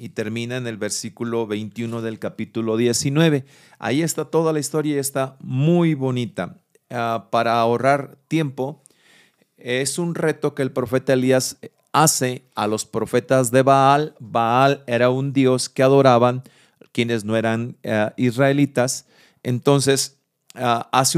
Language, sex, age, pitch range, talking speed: Spanish, male, 40-59, 115-140 Hz, 130 wpm